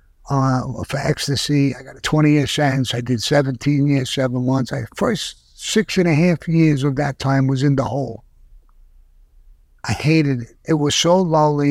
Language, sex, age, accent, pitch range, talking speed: English, male, 60-79, American, 110-160 Hz, 185 wpm